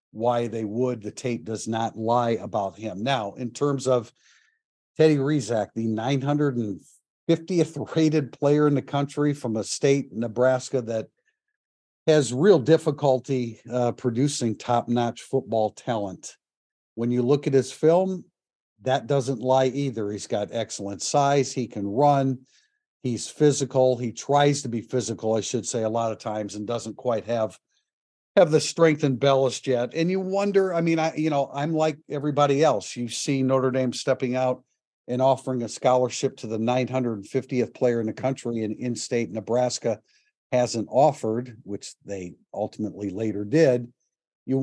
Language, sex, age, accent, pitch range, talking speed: English, male, 50-69, American, 115-140 Hz, 155 wpm